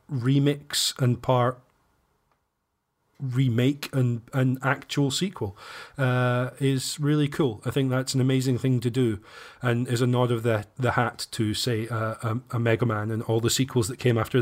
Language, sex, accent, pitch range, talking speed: English, male, British, 115-130 Hz, 175 wpm